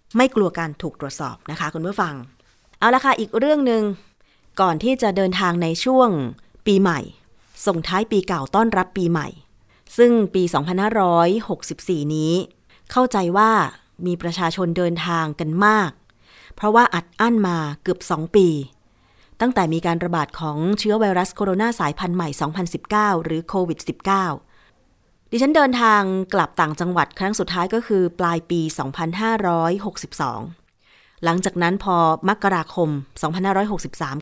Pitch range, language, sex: 160-205 Hz, Thai, female